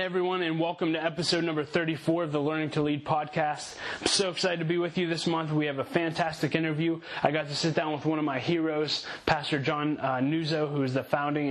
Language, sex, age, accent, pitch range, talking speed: English, male, 20-39, American, 140-160 Hz, 235 wpm